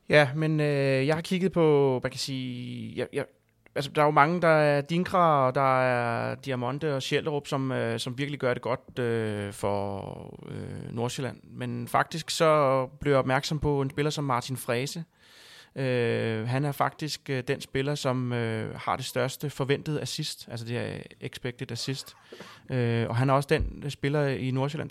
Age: 20-39